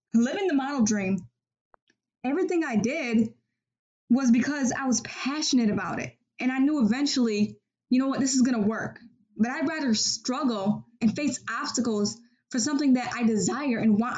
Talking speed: 165 wpm